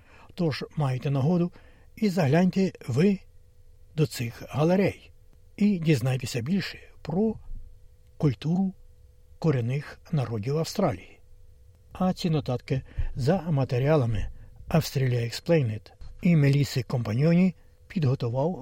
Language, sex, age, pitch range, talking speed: Ukrainian, male, 60-79, 110-165 Hz, 90 wpm